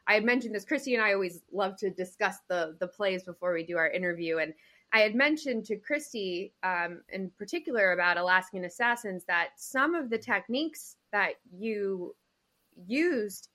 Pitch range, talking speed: 195-250 Hz, 175 wpm